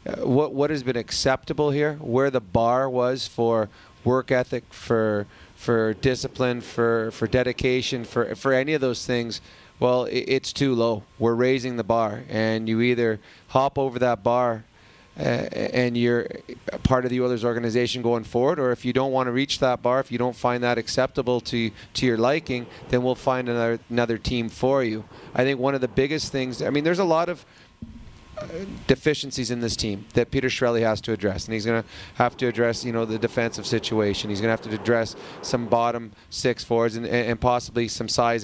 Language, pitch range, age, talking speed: English, 115-130 Hz, 30-49, 200 wpm